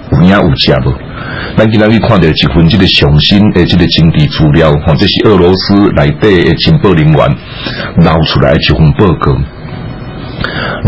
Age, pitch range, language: 60-79, 80-105 Hz, Chinese